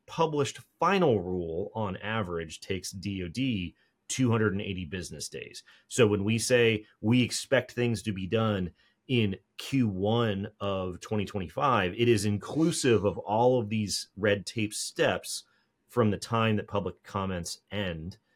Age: 30-49